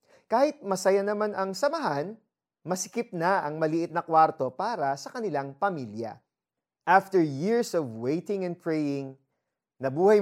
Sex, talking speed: male, 130 wpm